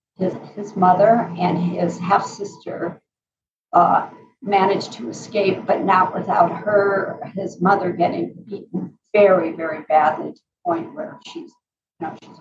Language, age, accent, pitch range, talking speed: English, 50-69, American, 180-225 Hz, 135 wpm